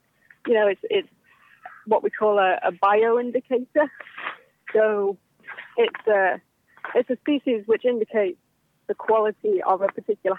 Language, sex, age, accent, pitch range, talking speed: English, female, 30-49, British, 210-280 Hz, 140 wpm